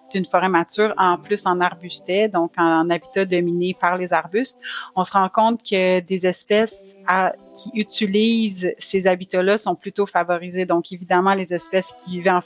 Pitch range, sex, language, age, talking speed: 180-205 Hz, female, French, 30-49, 170 wpm